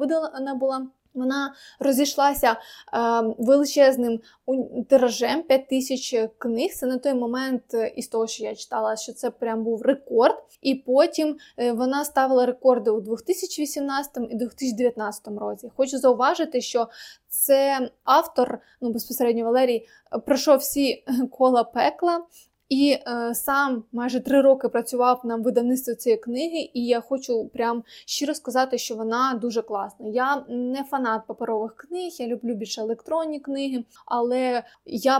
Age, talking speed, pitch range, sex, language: 20-39, 130 wpm, 240-275 Hz, female, Ukrainian